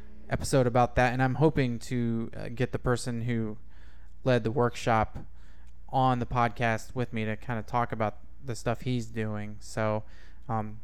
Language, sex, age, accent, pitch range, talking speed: English, male, 20-39, American, 115-140 Hz, 165 wpm